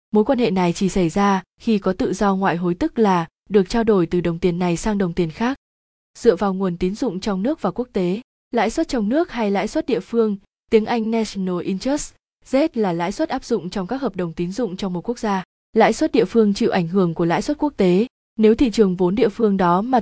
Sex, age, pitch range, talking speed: female, 20-39, 190-240 Hz, 255 wpm